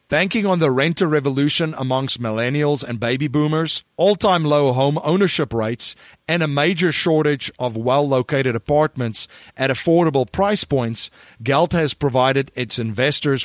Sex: male